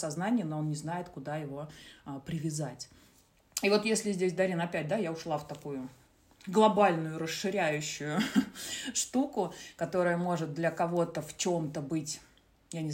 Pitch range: 150-180 Hz